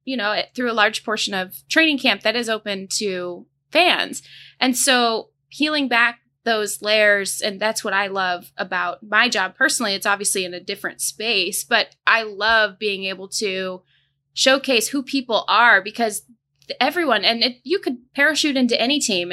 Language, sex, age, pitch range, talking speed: English, female, 20-39, 185-225 Hz, 170 wpm